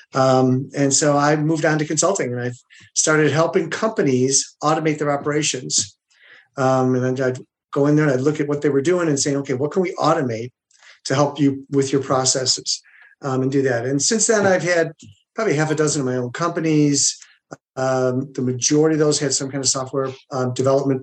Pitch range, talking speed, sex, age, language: 130-150 Hz, 210 wpm, male, 40-59, English